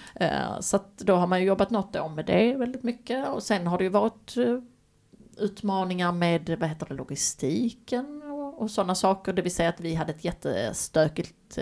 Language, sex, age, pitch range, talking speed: Swedish, female, 30-49, 170-205 Hz, 190 wpm